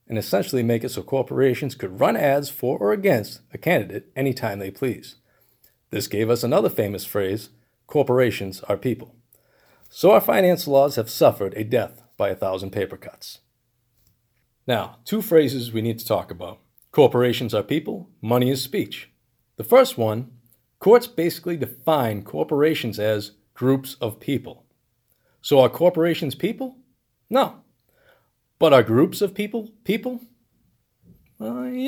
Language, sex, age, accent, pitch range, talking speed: English, male, 40-59, American, 120-170 Hz, 145 wpm